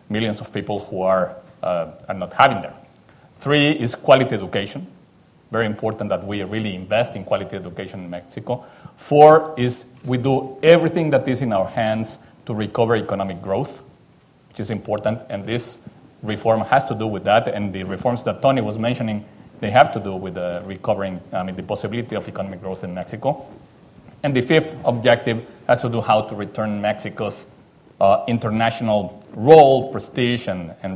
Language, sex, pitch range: English, male, 105-125 Hz